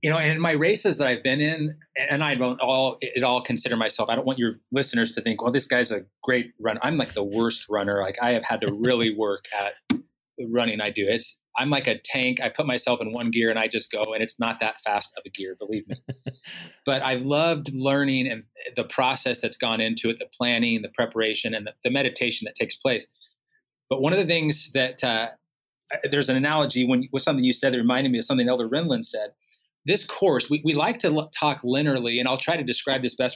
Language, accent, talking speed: English, American, 240 wpm